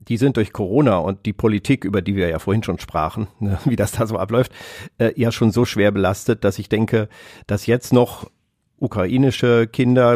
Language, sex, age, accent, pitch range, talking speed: German, male, 50-69, German, 105-120 Hz, 200 wpm